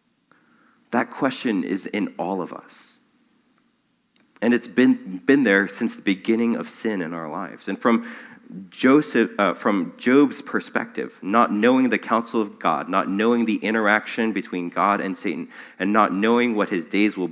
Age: 30-49